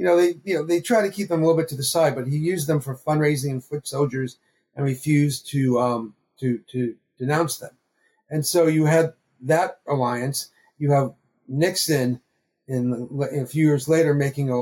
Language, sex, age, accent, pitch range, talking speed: English, male, 40-59, American, 125-150 Hz, 195 wpm